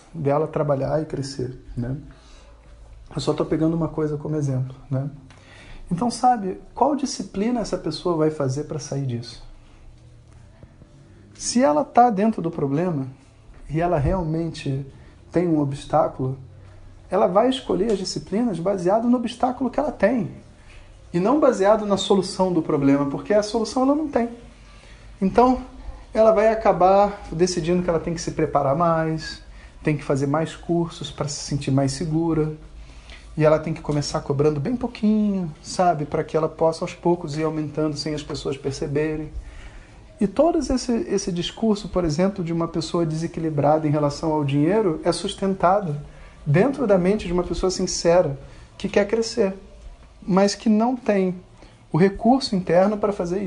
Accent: Brazilian